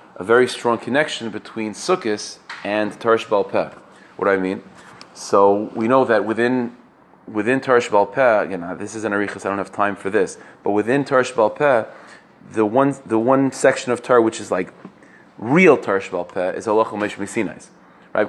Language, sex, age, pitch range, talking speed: English, male, 30-49, 105-135 Hz, 175 wpm